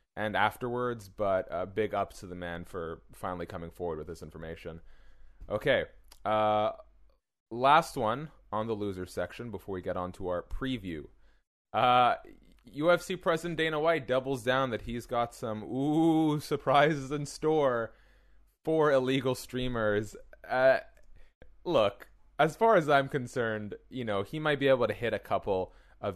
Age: 20-39